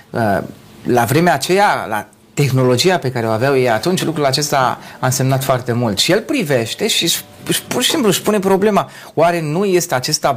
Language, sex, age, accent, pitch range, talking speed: Romanian, male, 30-49, native, 125-175 Hz, 180 wpm